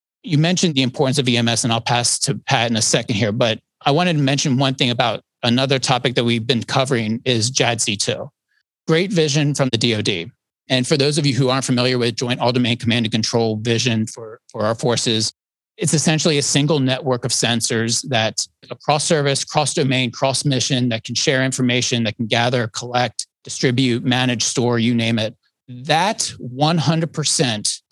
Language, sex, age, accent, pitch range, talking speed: English, male, 30-49, American, 120-150 Hz, 185 wpm